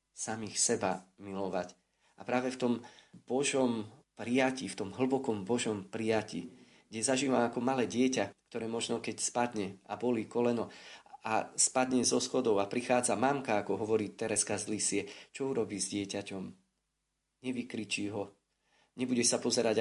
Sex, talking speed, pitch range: male, 140 wpm, 105-125 Hz